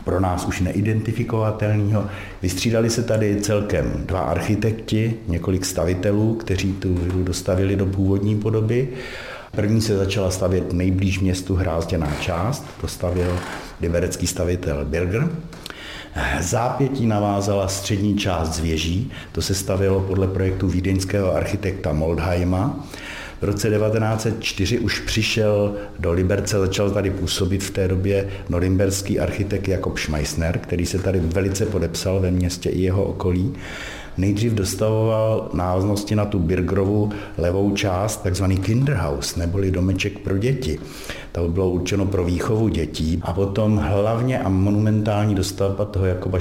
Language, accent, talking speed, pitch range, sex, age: Czech, native, 130 wpm, 90-105 Hz, male, 60-79